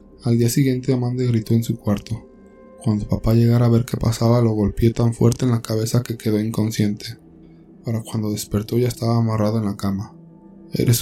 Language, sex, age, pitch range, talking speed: Spanish, male, 20-39, 110-125 Hz, 190 wpm